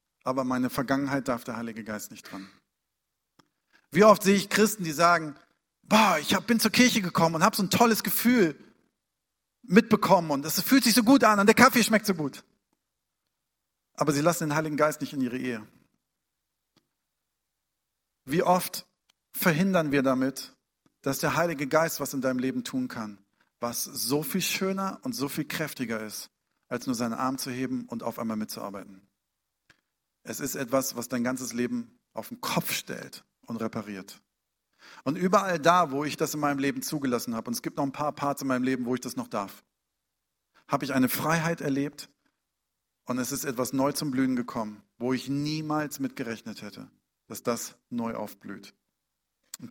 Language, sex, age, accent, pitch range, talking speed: German, male, 50-69, German, 125-170 Hz, 180 wpm